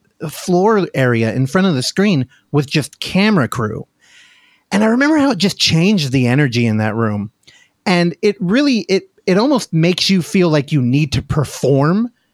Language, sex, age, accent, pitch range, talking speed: English, male, 30-49, American, 130-195 Hz, 185 wpm